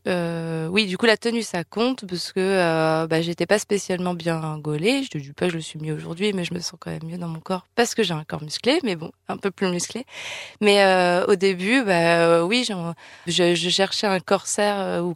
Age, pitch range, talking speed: 20-39, 165-200 Hz, 250 wpm